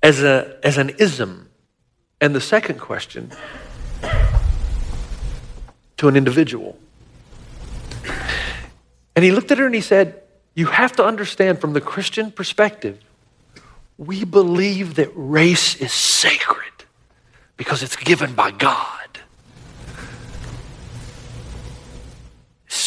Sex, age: male, 40-59